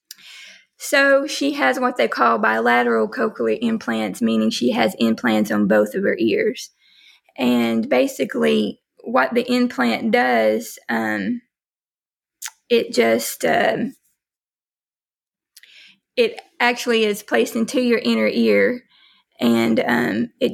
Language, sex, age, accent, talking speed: English, female, 20-39, American, 115 wpm